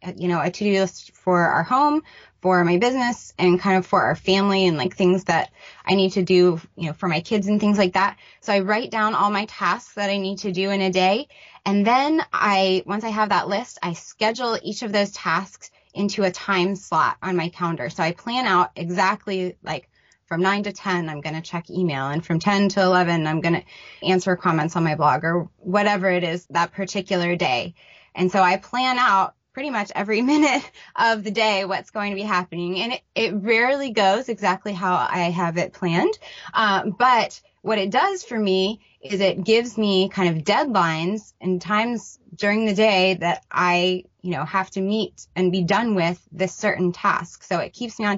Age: 20-39